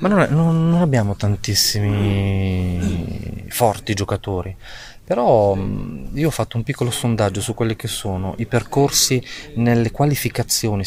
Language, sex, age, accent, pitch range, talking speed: Italian, male, 30-49, native, 100-130 Hz, 125 wpm